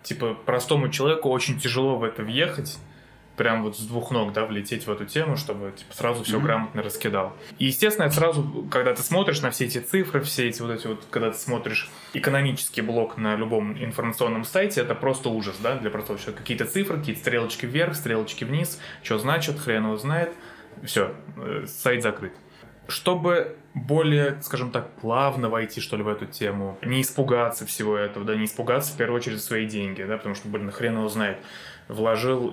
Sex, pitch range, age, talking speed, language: male, 110-140 Hz, 20-39, 185 wpm, Russian